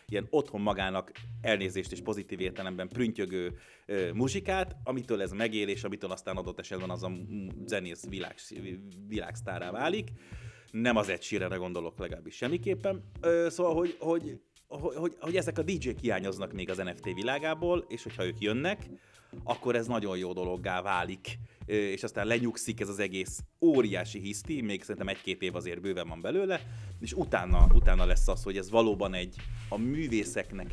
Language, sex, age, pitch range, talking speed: Hungarian, male, 30-49, 95-120 Hz, 160 wpm